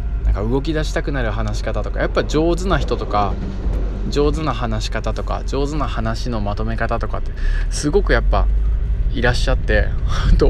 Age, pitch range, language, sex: 20-39, 100-140 Hz, Japanese, male